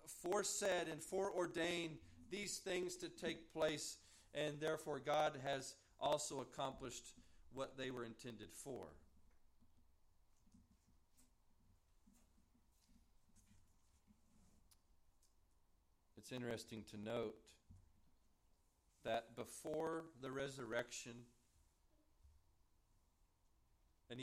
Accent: American